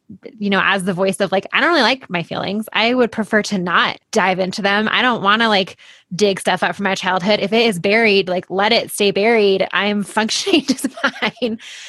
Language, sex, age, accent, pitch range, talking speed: English, female, 20-39, American, 195-220 Hz, 225 wpm